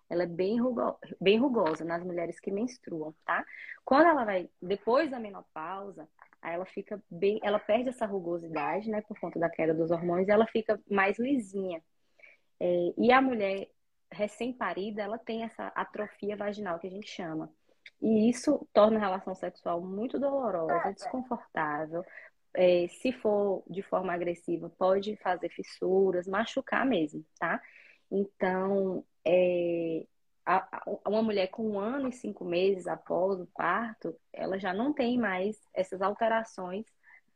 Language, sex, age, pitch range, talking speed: Portuguese, female, 20-39, 175-225 Hz, 140 wpm